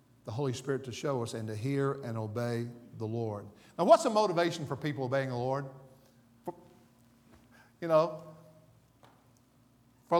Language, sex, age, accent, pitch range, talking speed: English, male, 50-69, American, 130-215 Hz, 160 wpm